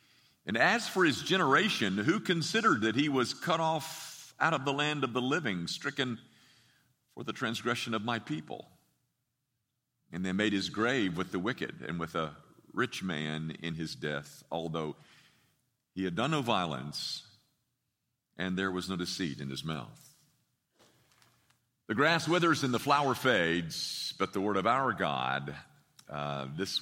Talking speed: 160 wpm